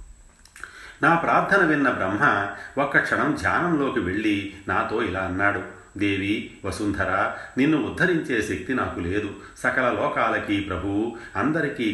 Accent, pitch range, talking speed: native, 90-100 Hz, 110 wpm